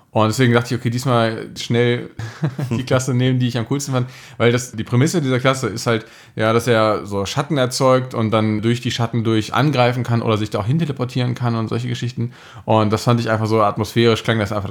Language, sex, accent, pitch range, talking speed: German, male, German, 110-130 Hz, 235 wpm